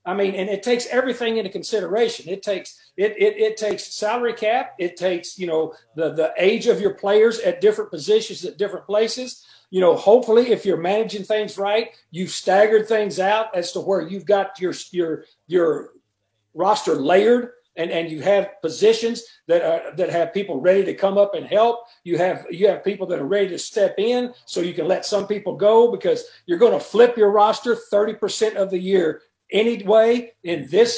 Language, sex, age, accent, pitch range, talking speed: English, male, 50-69, American, 185-235 Hz, 200 wpm